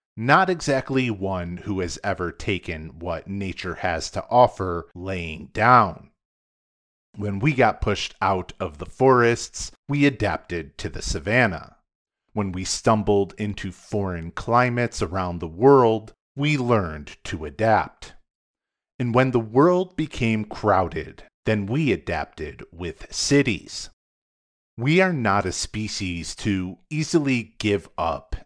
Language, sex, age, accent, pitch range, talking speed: English, male, 40-59, American, 90-125 Hz, 125 wpm